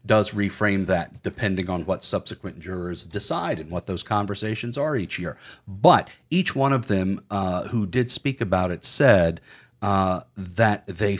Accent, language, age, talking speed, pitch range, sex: American, English, 40-59, 165 wpm, 95-115 Hz, male